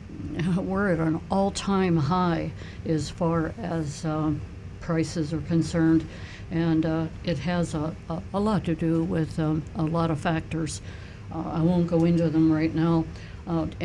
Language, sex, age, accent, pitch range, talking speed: English, female, 60-79, American, 155-175 Hz, 160 wpm